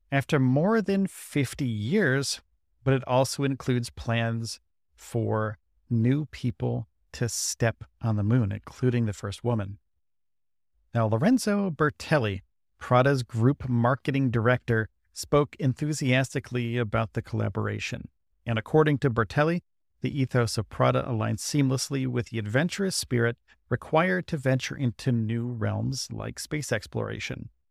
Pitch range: 115-140 Hz